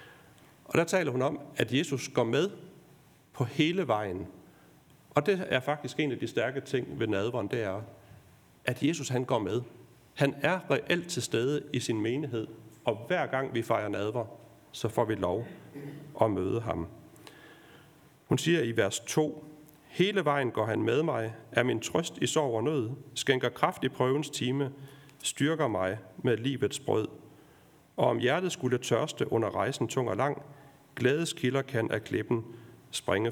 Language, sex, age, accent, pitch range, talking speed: Danish, male, 40-59, native, 115-150 Hz, 170 wpm